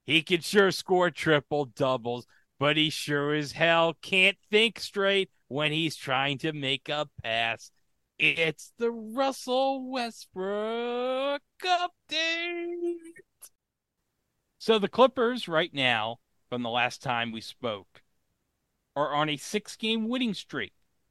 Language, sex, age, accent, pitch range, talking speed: English, male, 40-59, American, 125-175 Hz, 120 wpm